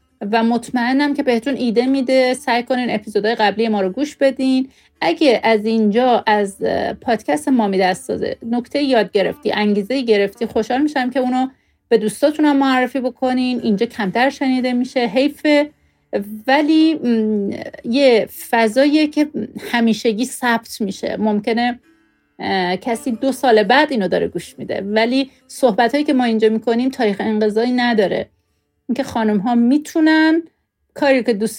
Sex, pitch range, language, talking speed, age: female, 205-260 Hz, English, 140 wpm, 40-59